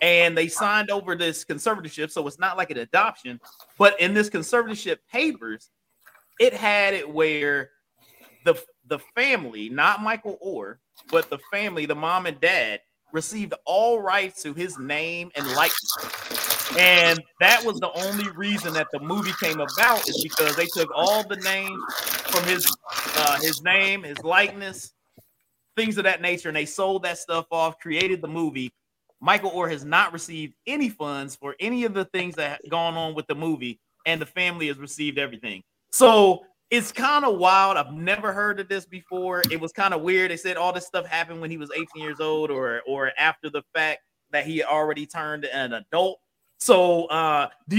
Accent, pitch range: American, 155-200 Hz